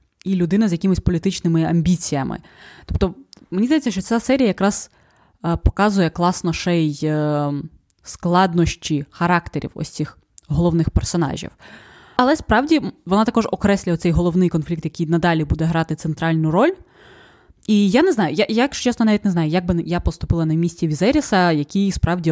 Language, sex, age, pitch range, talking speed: Ukrainian, female, 20-39, 165-205 Hz, 145 wpm